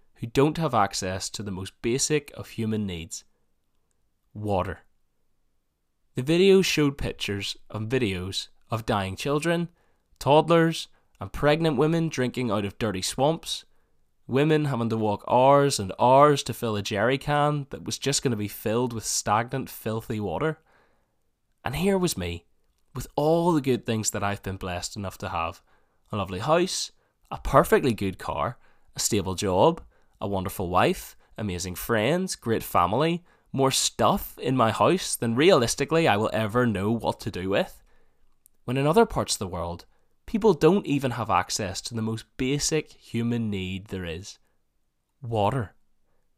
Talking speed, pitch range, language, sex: 160 wpm, 100-145 Hz, English, male